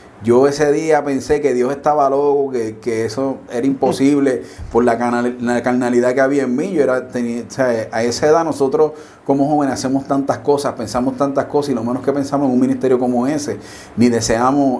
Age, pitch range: 30-49, 120-140 Hz